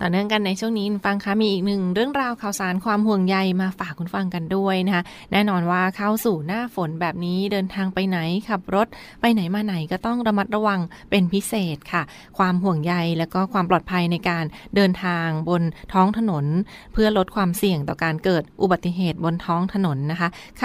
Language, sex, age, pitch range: Thai, female, 20-39, 175-210 Hz